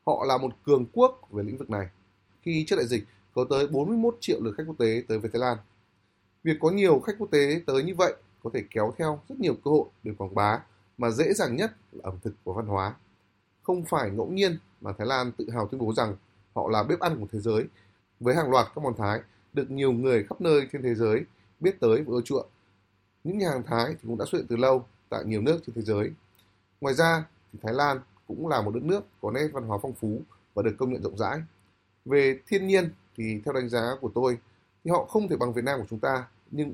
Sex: male